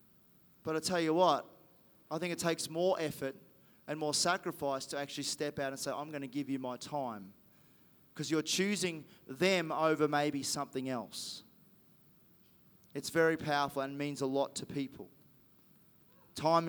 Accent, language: Australian, English